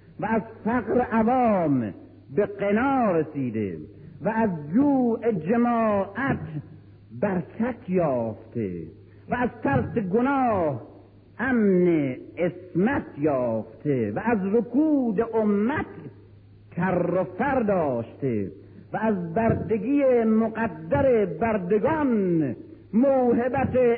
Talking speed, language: 85 wpm, Persian